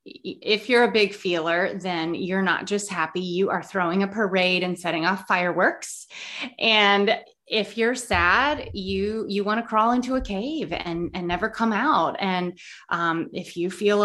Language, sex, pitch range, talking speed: English, female, 180-230 Hz, 175 wpm